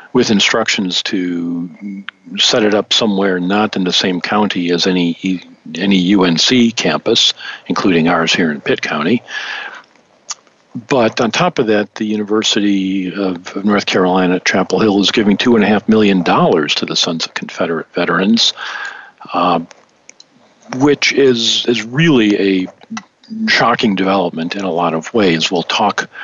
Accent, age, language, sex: American, 50-69, English, male